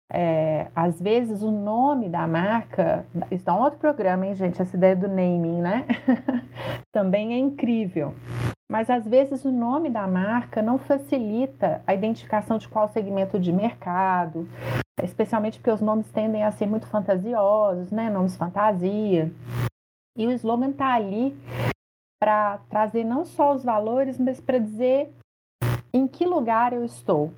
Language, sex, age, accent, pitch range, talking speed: Portuguese, female, 30-49, Brazilian, 185-250 Hz, 150 wpm